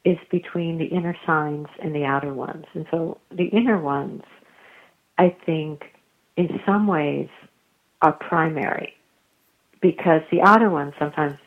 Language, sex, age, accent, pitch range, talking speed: English, female, 50-69, American, 155-195 Hz, 135 wpm